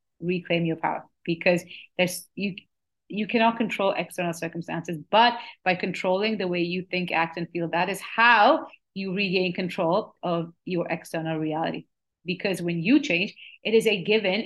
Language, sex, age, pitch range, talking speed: English, female, 30-49, 170-195 Hz, 160 wpm